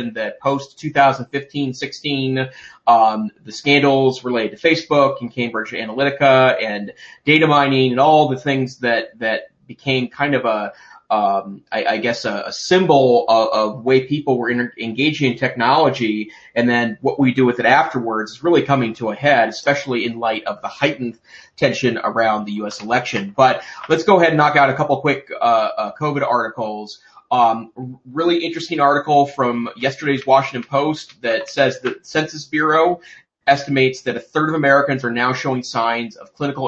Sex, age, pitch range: male, 30-49, 120-140 Hz